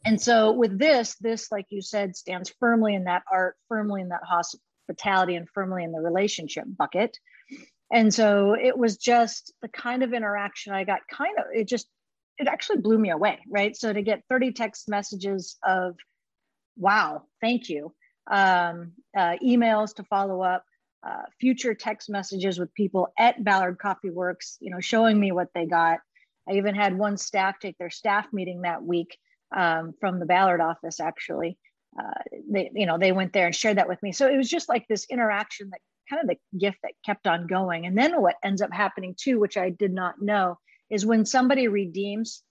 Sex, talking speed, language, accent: female, 195 wpm, English, American